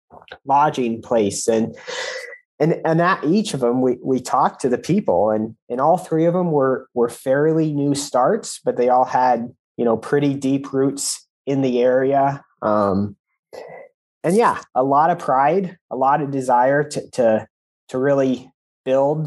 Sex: male